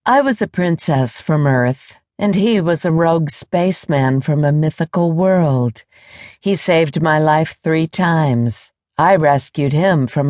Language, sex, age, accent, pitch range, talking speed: English, female, 50-69, American, 140-175 Hz, 150 wpm